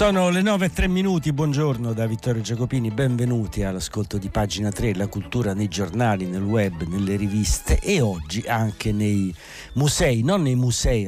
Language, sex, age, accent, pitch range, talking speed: Italian, male, 60-79, native, 90-120 Hz, 170 wpm